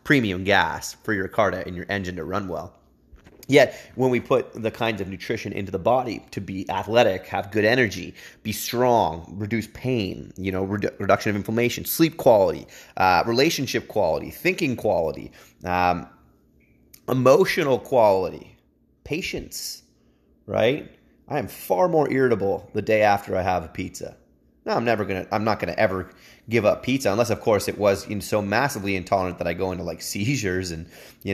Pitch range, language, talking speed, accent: 85-110 Hz, English, 175 wpm, American